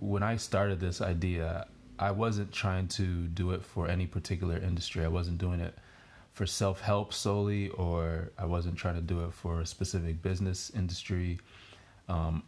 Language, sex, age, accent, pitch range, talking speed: English, male, 20-39, American, 85-100 Hz, 175 wpm